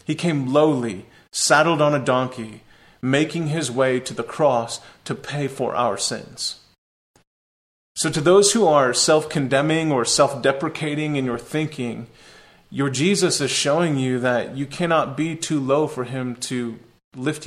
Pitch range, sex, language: 125-155 Hz, male, English